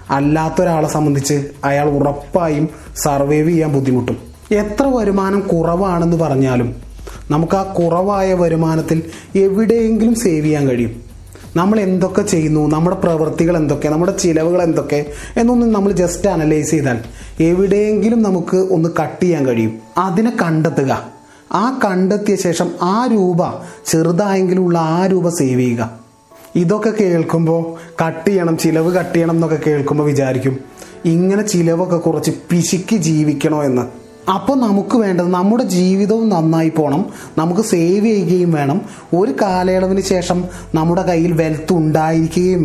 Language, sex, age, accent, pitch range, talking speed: Malayalam, male, 30-49, native, 150-195 Hz, 120 wpm